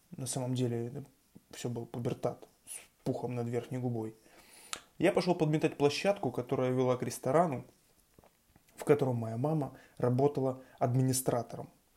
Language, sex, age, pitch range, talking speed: Russian, male, 20-39, 125-145 Hz, 125 wpm